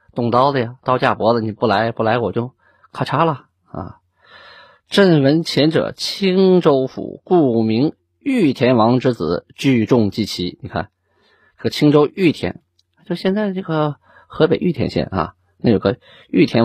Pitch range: 115-175 Hz